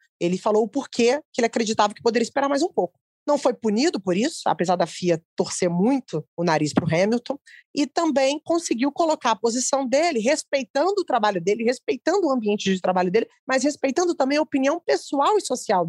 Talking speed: 200 wpm